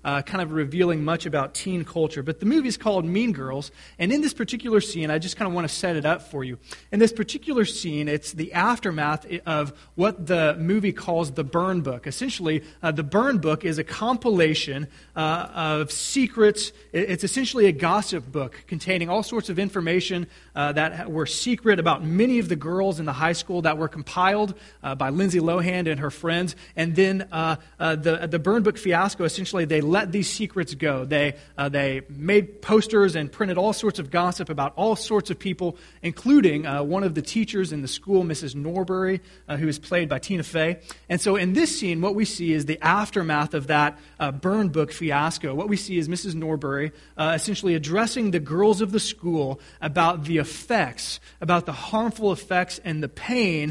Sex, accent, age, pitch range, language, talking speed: male, American, 30-49, 155-200 Hz, English, 200 wpm